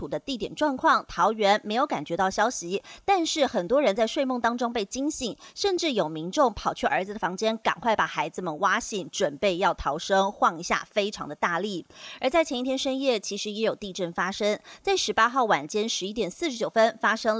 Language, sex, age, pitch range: Chinese, female, 30-49, 190-255 Hz